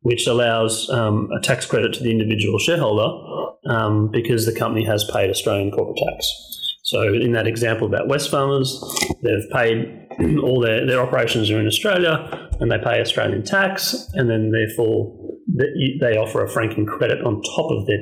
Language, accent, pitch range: English, Australian, 105-125 Hz